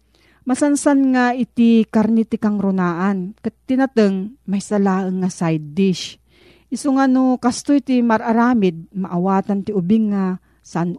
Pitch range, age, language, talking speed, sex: 175-235 Hz, 40-59, Filipino, 125 wpm, female